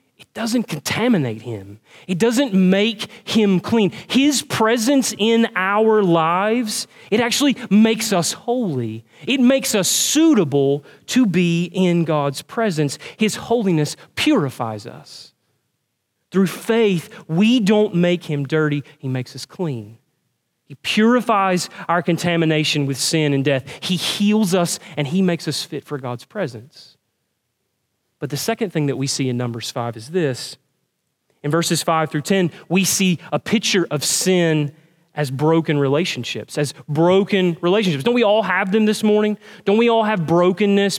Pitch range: 150-215 Hz